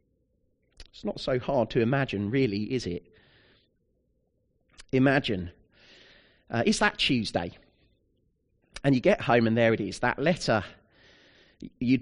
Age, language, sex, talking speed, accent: 30-49, English, male, 125 wpm, British